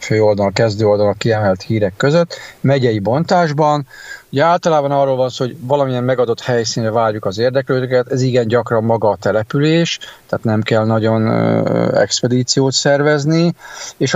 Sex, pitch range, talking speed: male, 110-135 Hz, 140 wpm